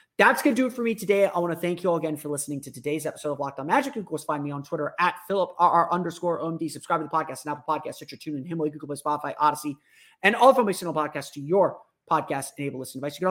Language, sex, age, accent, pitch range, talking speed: English, male, 30-49, American, 145-185 Hz, 280 wpm